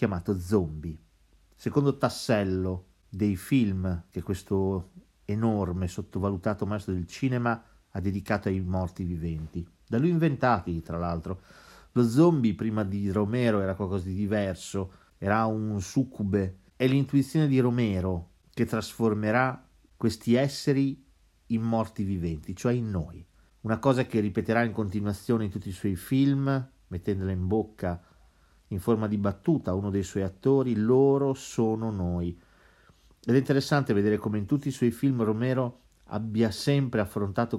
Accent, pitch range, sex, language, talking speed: native, 95-125 Hz, male, Italian, 140 wpm